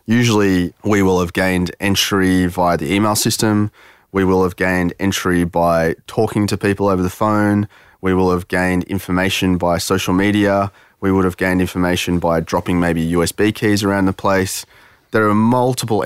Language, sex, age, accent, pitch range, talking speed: English, male, 20-39, Australian, 90-105 Hz, 170 wpm